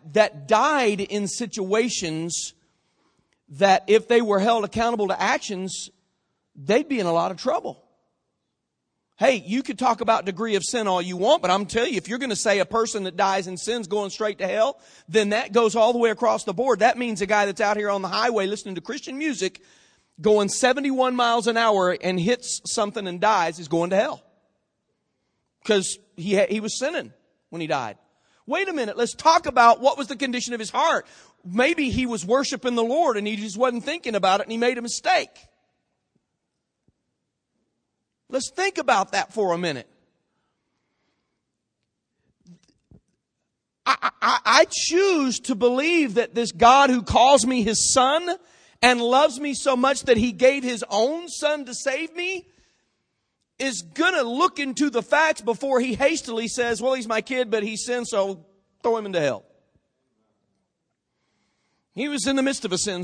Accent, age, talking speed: American, 40-59, 180 wpm